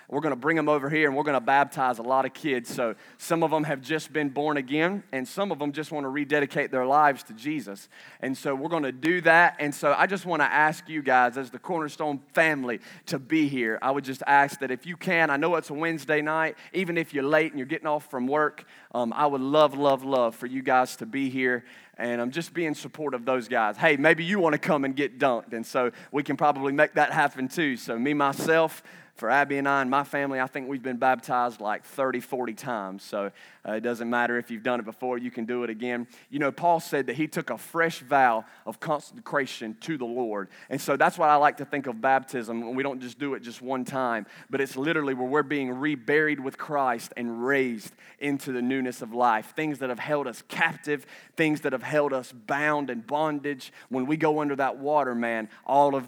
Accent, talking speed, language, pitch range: American, 245 wpm, English, 130-155 Hz